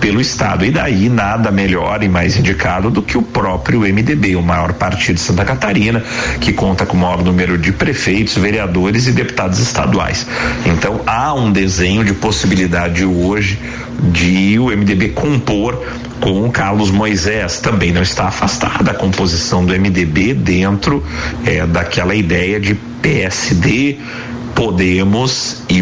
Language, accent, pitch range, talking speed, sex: Portuguese, Brazilian, 90-110 Hz, 145 wpm, male